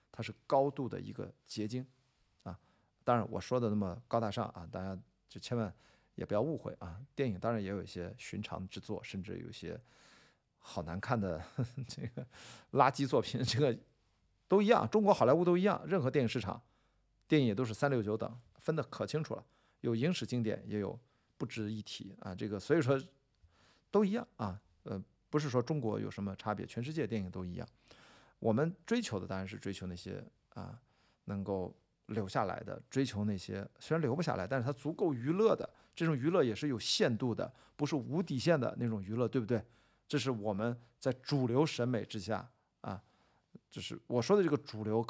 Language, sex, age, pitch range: Chinese, male, 50-69, 105-140 Hz